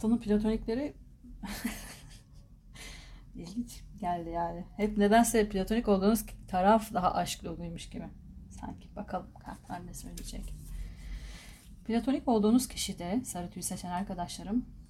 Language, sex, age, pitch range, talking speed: Turkish, female, 30-49, 175-220 Hz, 95 wpm